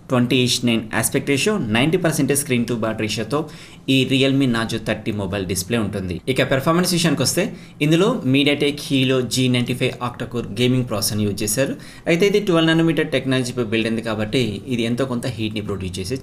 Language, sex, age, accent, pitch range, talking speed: Telugu, male, 20-39, native, 110-150 Hz, 180 wpm